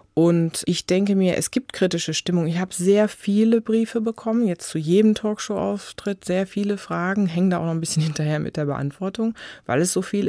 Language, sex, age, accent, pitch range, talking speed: German, female, 30-49, German, 145-190 Hz, 205 wpm